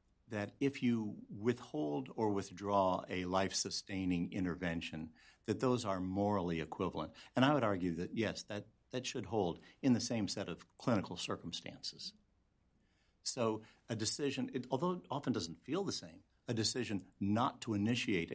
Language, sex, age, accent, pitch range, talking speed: English, male, 60-79, American, 90-115 Hz, 150 wpm